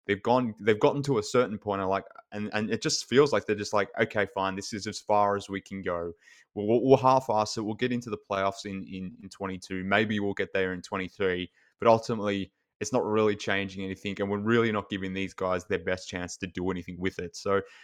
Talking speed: 245 wpm